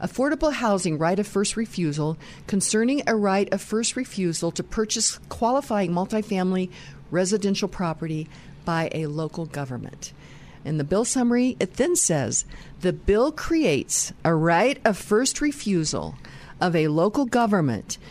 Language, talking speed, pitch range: English, 135 wpm, 155-205 Hz